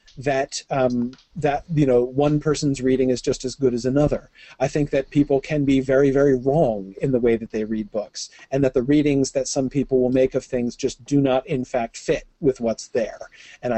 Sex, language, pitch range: male, English, 125-160 Hz